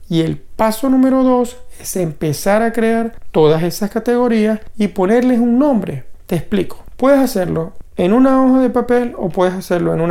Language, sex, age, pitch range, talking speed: Spanish, male, 40-59, 185-245 Hz, 180 wpm